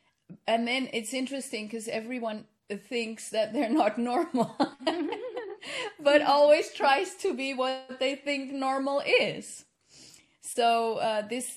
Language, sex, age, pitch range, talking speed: English, female, 30-49, 200-245 Hz, 125 wpm